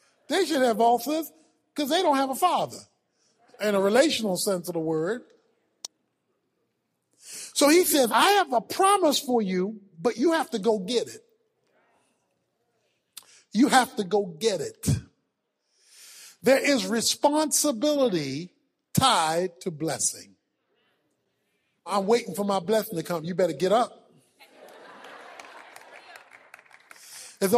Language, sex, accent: English, male, American